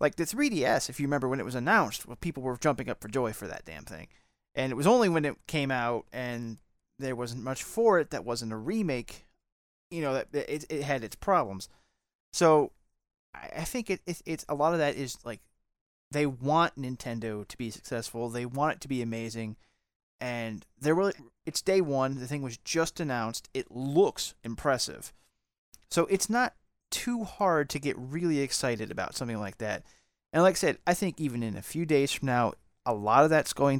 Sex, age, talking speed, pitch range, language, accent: male, 30-49, 210 wpm, 120-170 Hz, English, American